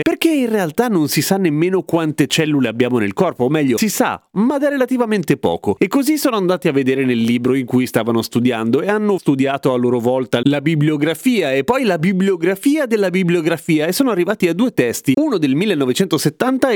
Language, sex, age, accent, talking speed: Italian, male, 30-49, native, 195 wpm